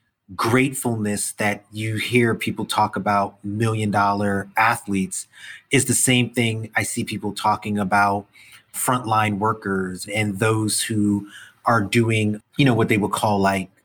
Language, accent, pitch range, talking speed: English, American, 105-120 Hz, 140 wpm